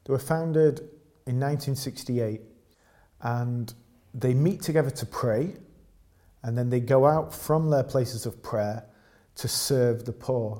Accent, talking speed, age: British, 140 wpm, 40-59